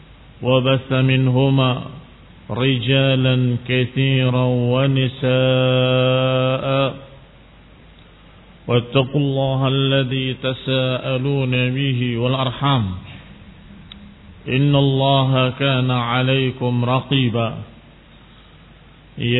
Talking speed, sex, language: 55 wpm, male, Indonesian